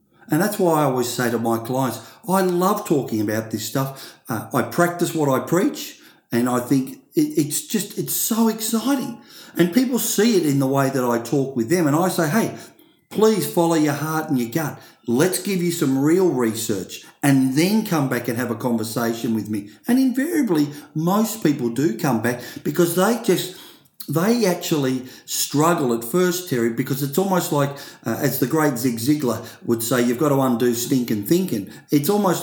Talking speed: 190 wpm